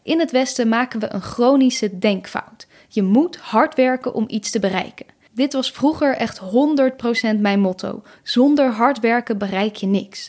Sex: female